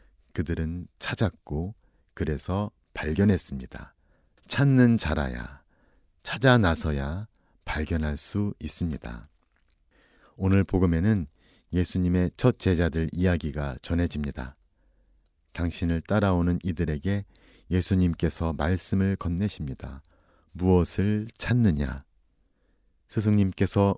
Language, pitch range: Korean, 75-95 Hz